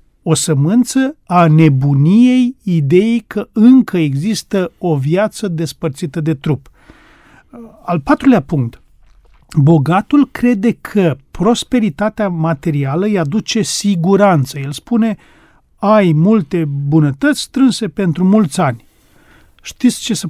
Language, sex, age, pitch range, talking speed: Romanian, male, 40-59, 160-215 Hz, 105 wpm